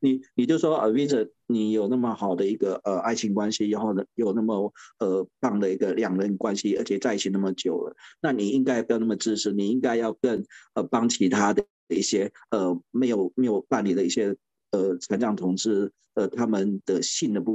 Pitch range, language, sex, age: 100-130 Hz, Chinese, male, 50-69